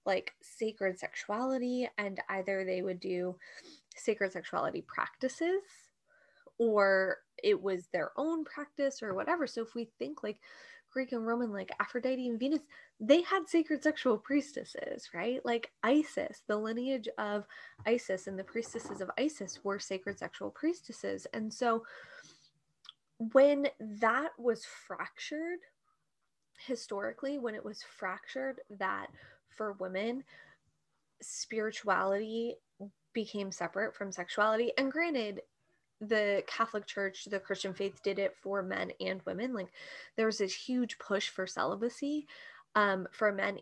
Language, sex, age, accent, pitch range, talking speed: English, female, 20-39, American, 195-265 Hz, 130 wpm